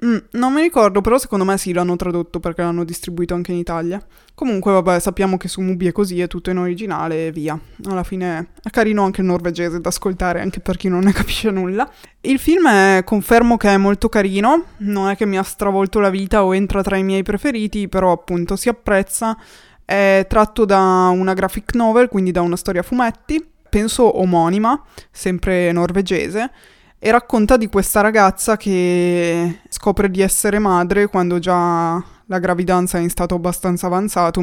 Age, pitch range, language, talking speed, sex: 20-39, 175-205 Hz, Italian, 185 wpm, female